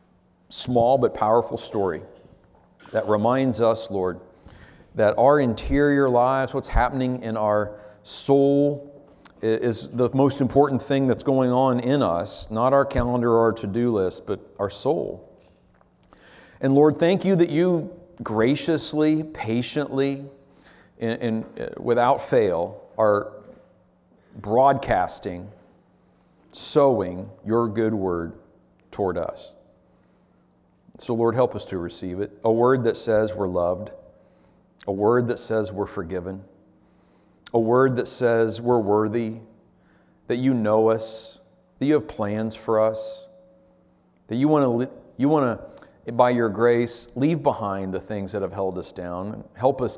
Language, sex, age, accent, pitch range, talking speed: English, male, 50-69, American, 100-130 Hz, 130 wpm